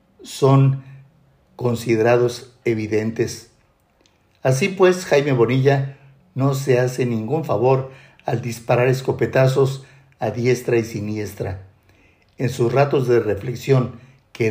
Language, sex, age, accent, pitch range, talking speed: Spanish, male, 50-69, Mexican, 115-135 Hz, 105 wpm